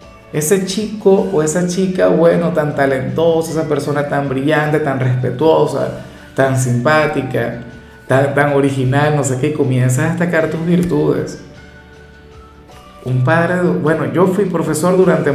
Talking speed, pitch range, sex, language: 135 wpm, 130-170 Hz, male, Spanish